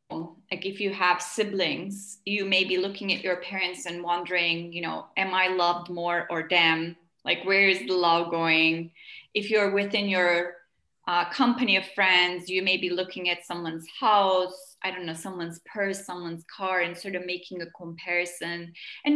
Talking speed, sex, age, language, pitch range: 180 wpm, female, 30-49, English, 180-215 Hz